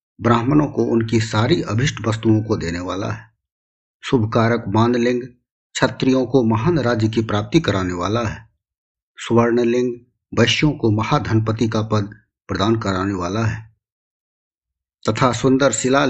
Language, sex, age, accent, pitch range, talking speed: Hindi, male, 50-69, native, 110-125 Hz, 130 wpm